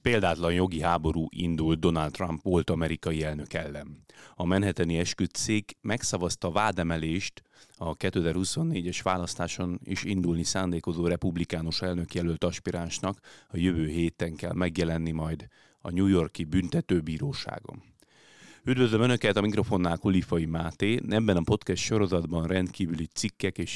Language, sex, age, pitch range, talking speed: Hungarian, male, 30-49, 85-105 Hz, 120 wpm